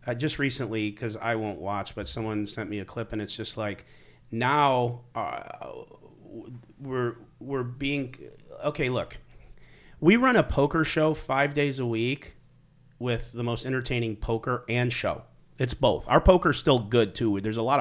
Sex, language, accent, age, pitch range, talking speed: male, English, American, 40-59, 105-140 Hz, 170 wpm